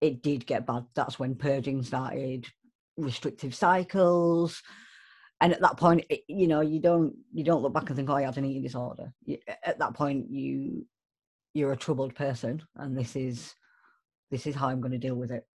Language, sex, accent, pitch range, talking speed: English, female, British, 135-170 Hz, 200 wpm